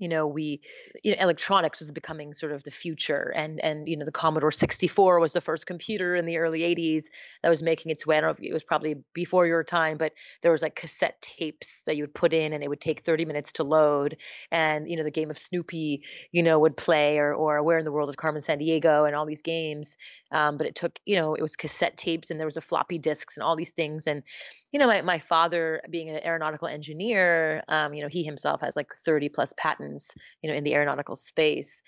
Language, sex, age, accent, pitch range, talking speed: English, female, 30-49, American, 150-165 Hz, 245 wpm